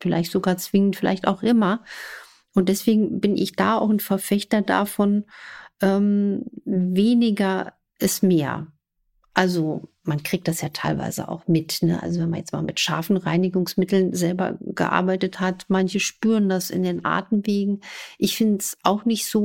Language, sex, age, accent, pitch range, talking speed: German, female, 50-69, German, 185-210 Hz, 155 wpm